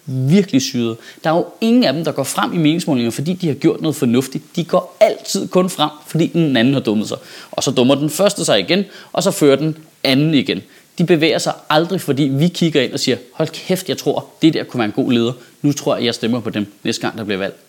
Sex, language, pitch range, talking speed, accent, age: male, Danish, 135-220 Hz, 260 wpm, native, 30-49